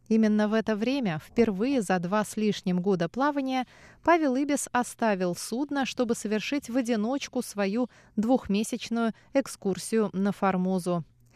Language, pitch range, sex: Russian, 180-240 Hz, female